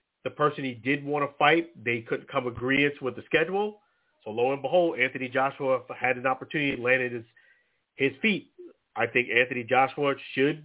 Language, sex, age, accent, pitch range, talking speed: English, male, 40-59, American, 125-155 Hz, 180 wpm